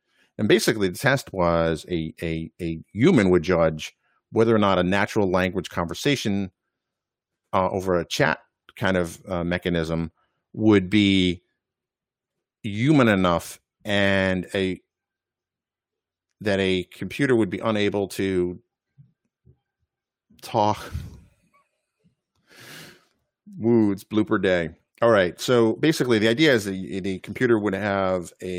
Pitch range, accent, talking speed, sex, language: 90-115 Hz, American, 120 wpm, male, English